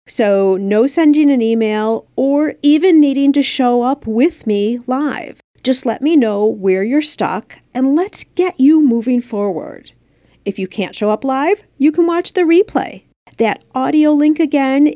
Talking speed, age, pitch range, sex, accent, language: 170 wpm, 40-59, 195-280 Hz, female, American, English